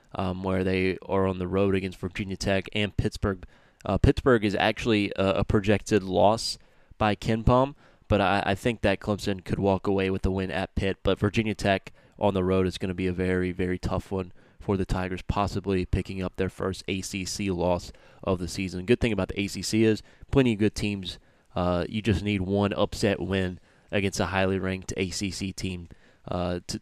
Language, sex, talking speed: English, male, 200 wpm